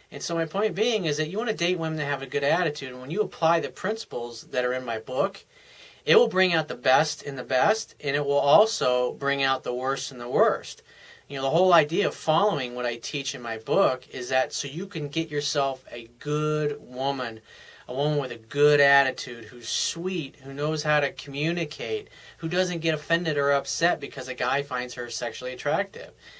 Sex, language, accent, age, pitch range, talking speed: male, English, American, 30-49, 130-170 Hz, 220 wpm